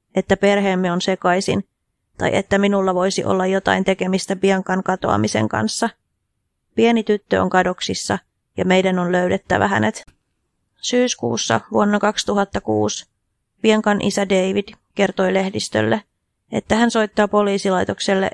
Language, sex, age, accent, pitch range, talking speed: Finnish, female, 30-49, native, 175-205 Hz, 115 wpm